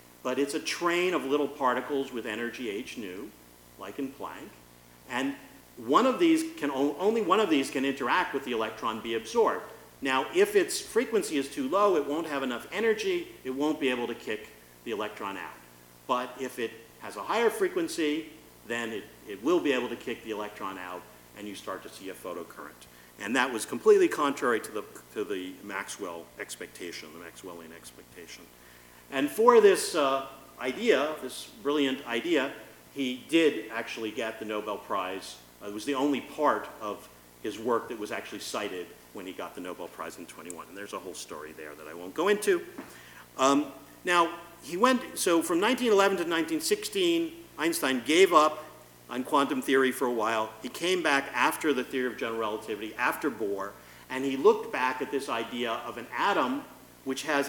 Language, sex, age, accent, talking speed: English, male, 50-69, American, 185 wpm